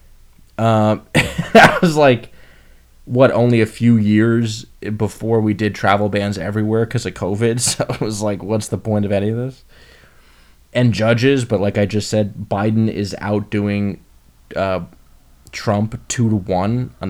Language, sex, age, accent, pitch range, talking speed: English, male, 20-39, American, 100-135 Hz, 160 wpm